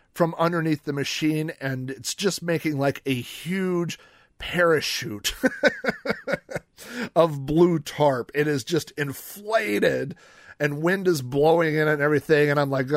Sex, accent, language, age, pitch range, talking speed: male, American, English, 40-59, 125-160 Hz, 140 wpm